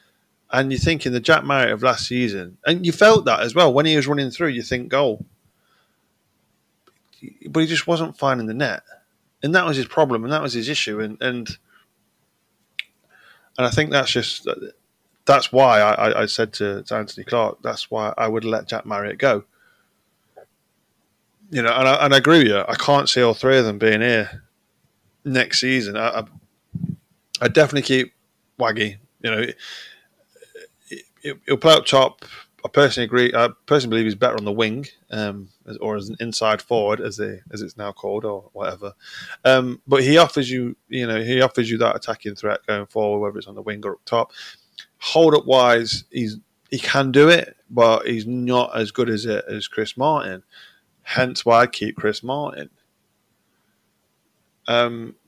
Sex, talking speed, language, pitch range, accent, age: male, 185 wpm, English, 110-140 Hz, British, 20-39